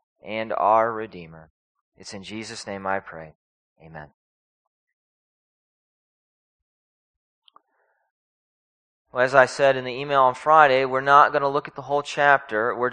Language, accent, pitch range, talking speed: English, American, 120-150 Hz, 135 wpm